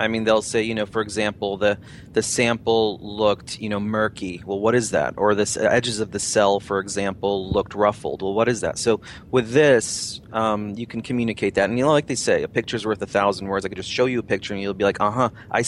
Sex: male